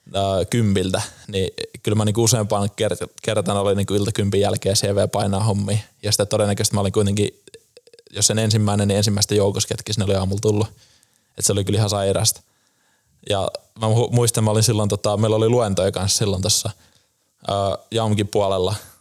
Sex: male